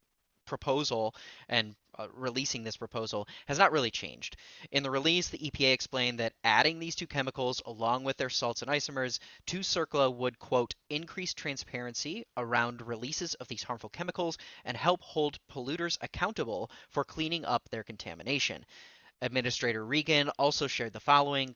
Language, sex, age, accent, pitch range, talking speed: English, male, 30-49, American, 120-145 Hz, 155 wpm